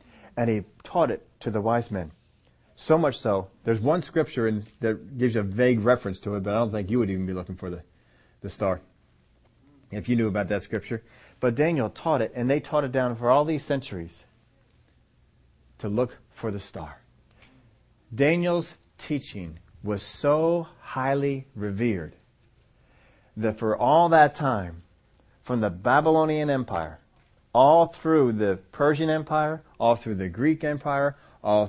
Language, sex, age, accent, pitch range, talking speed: English, male, 40-59, American, 95-130 Hz, 160 wpm